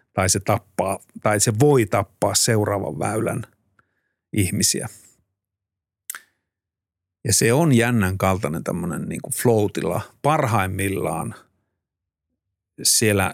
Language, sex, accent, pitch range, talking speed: Finnish, male, native, 95-115 Hz, 90 wpm